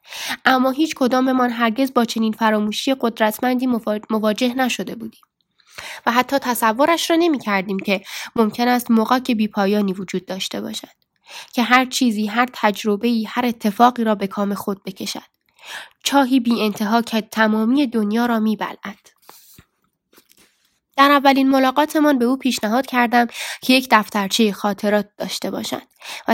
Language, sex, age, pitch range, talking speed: Persian, female, 10-29, 215-275 Hz, 145 wpm